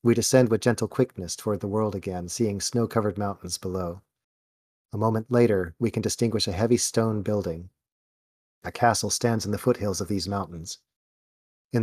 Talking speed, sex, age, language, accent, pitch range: 165 wpm, male, 40-59, English, American, 95-115 Hz